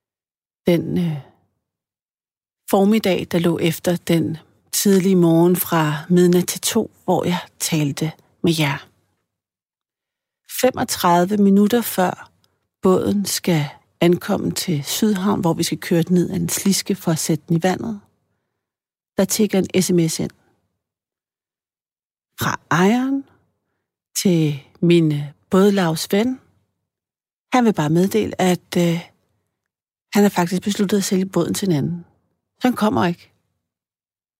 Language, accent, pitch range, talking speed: Danish, native, 160-190 Hz, 125 wpm